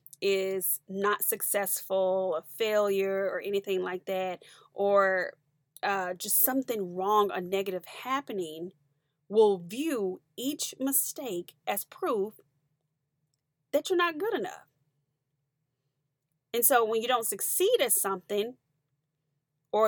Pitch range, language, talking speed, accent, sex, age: 150-225 Hz, English, 110 wpm, American, female, 20-39